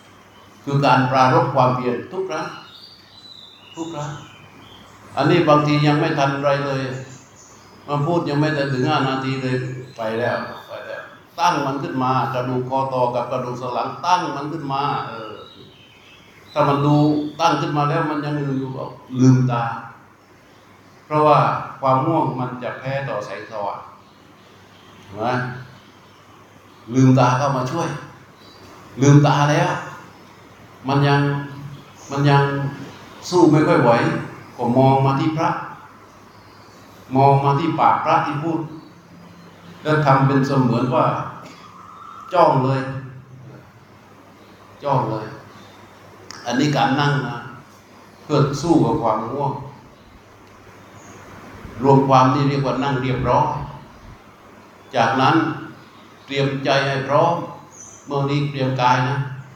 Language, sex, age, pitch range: Thai, male, 60-79, 110-145 Hz